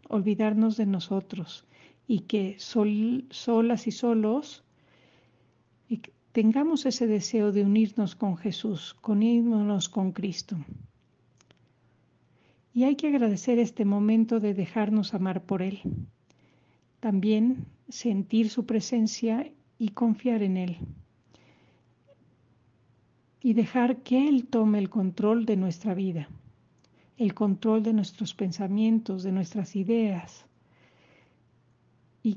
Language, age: Spanish, 50-69